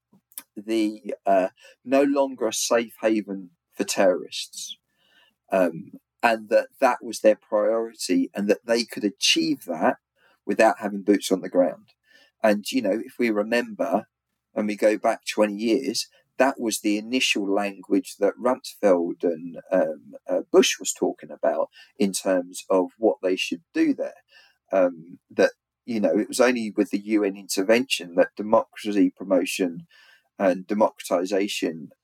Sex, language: male, English